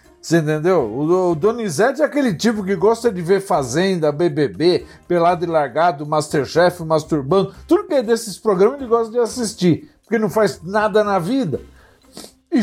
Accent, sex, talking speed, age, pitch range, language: Brazilian, male, 160 wpm, 50-69, 180-235 Hz, Portuguese